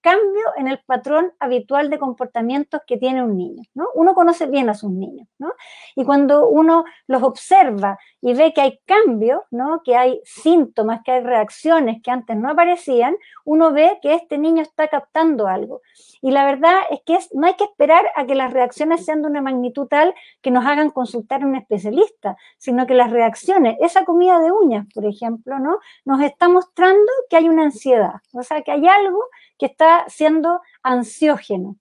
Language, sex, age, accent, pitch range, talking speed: Spanish, female, 50-69, American, 245-325 Hz, 190 wpm